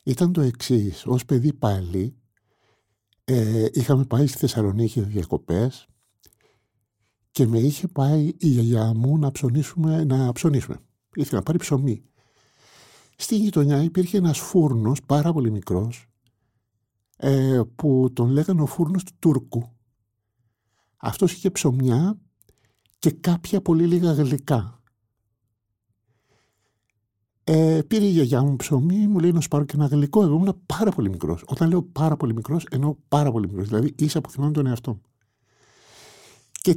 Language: Greek